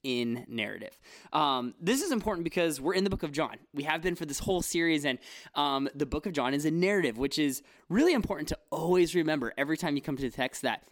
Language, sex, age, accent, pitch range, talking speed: English, male, 20-39, American, 140-185 Hz, 240 wpm